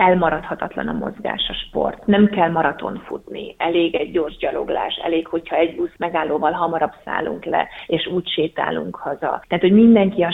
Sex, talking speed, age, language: female, 170 wpm, 30-49, Hungarian